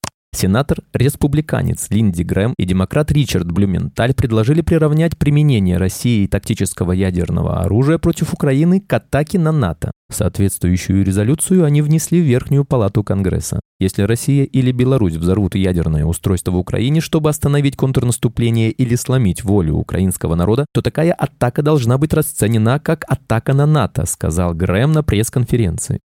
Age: 20-39